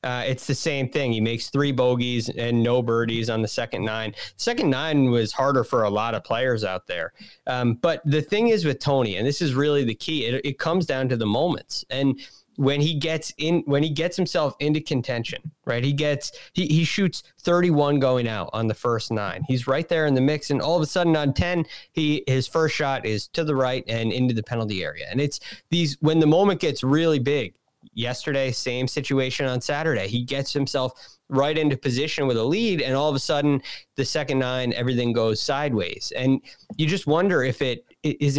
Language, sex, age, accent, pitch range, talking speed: English, male, 30-49, American, 125-150 Hz, 215 wpm